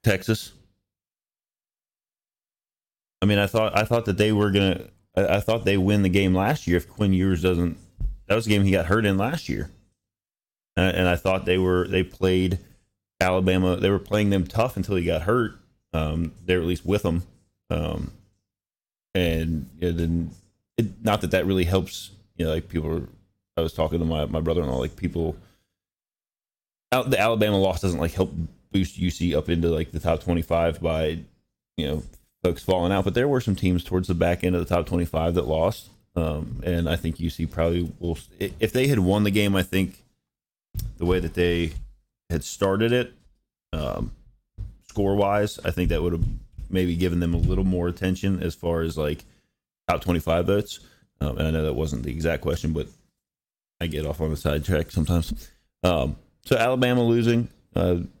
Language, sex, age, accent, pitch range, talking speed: English, male, 20-39, American, 85-100 Hz, 190 wpm